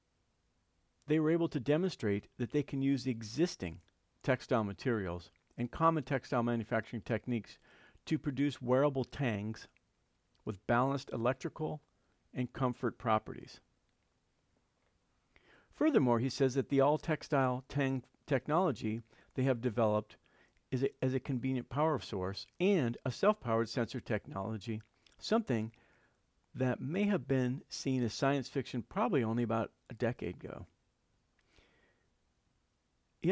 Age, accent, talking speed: 50-69, American, 115 wpm